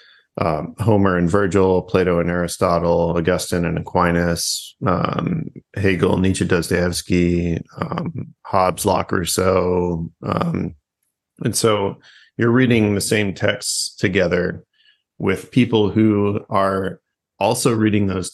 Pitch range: 90-105 Hz